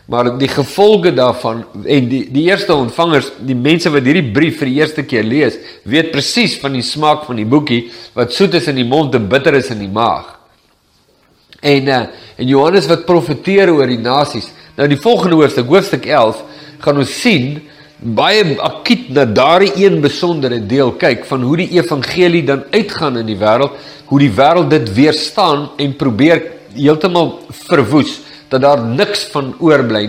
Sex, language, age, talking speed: male, English, 50-69, 170 wpm